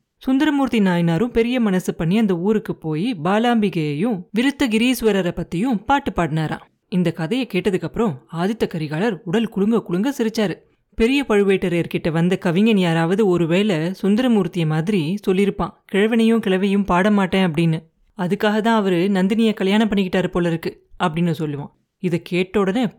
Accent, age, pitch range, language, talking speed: native, 30-49, 175-225 Hz, Tamil, 130 wpm